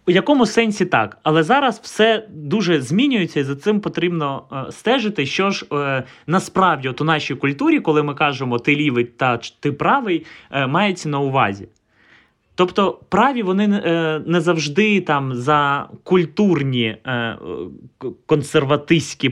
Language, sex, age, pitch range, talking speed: Ukrainian, male, 20-39, 130-180 Hz, 135 wpm